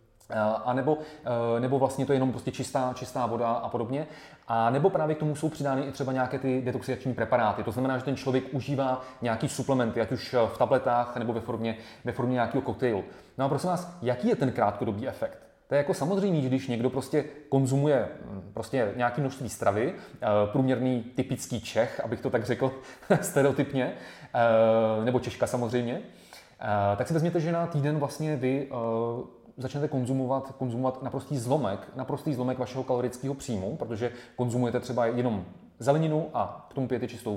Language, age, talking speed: Czech, 30-49, 165 wpm